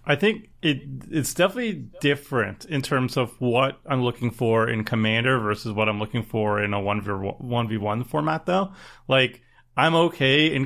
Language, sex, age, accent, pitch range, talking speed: English, male, 30-49, American, 115-140 Hz, 185 wpm